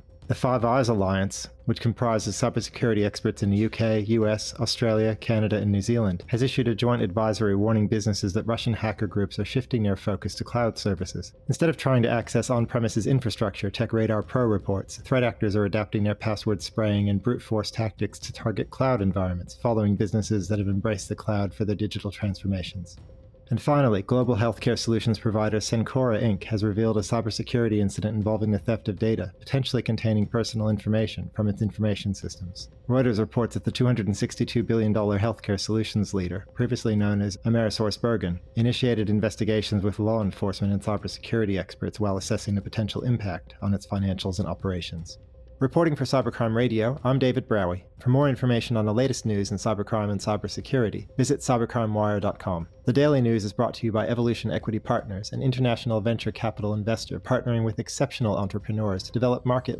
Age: 40-59